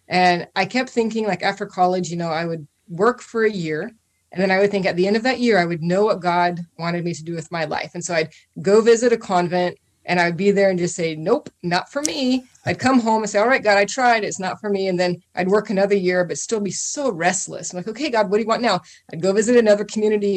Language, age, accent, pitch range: English, 20-39, American, 175-215 Hz